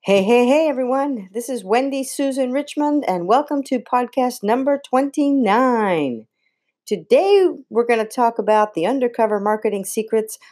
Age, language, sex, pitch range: 50-69, English, female, 170-250 Hz